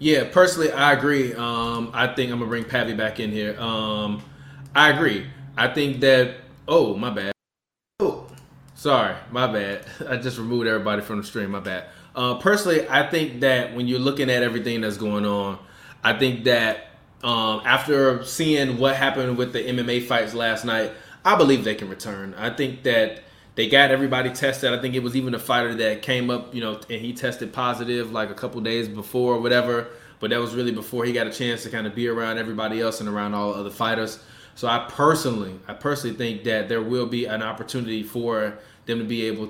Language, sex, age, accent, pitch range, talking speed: English, male, 20-39, American, 110-135 Hz, 205 wpm